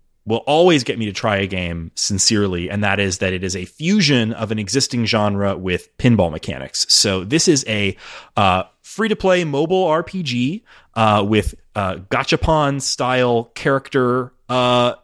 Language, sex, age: English, male, 30-49